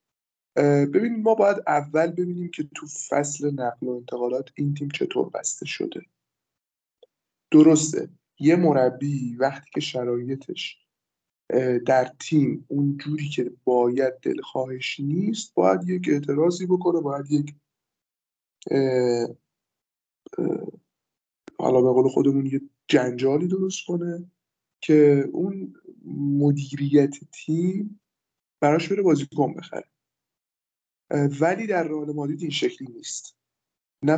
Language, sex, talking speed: Persian, male, 110 wpm